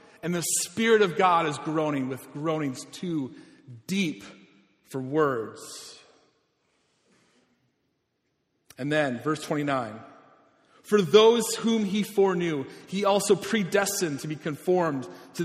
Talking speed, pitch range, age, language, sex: 115 wpm, 150-225 Hz, 40-59, English, male